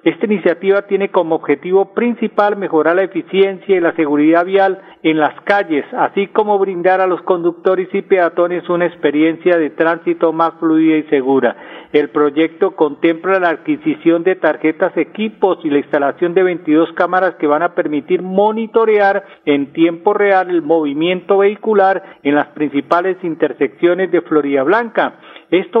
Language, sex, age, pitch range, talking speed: Spanish, male, 40-59, 160-195 Hz, 150 wpm